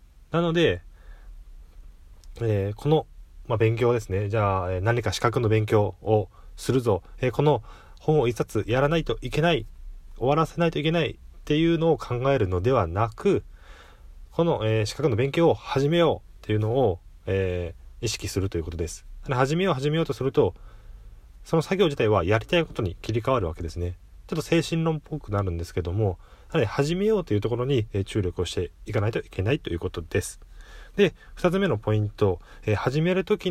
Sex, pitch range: male, 90-145 Hz